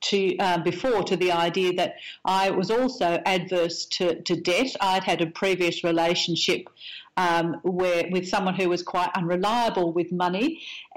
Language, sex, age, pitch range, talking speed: English, female, 50-69, 175-210 Hz, 160 wpm